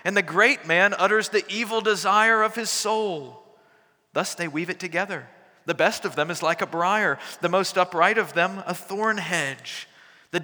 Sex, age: male, 40-59